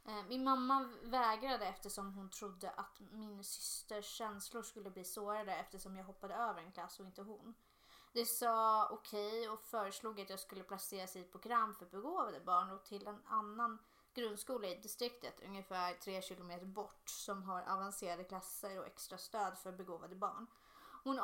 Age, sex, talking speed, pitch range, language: 20-39, female, 165 wpm, 195-235 Hz, Swedish